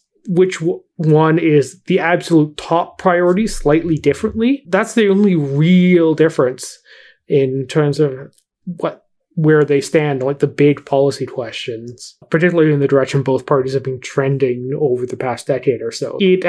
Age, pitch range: 20-39, 135-165 Hz